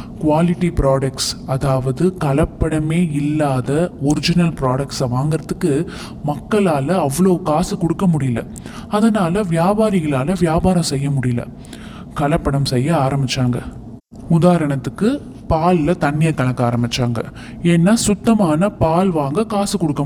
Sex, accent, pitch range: male, native, 140-185 Hz